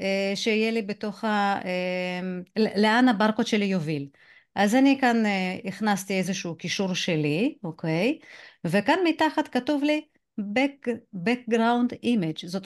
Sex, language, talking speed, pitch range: female, Hebrew, 110 wpm, 185-250 Hz